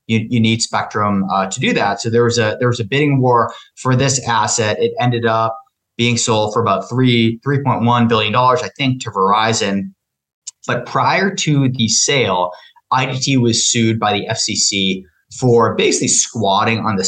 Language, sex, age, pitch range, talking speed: English, male, 30-49, 105-125 Hz, 180 wpm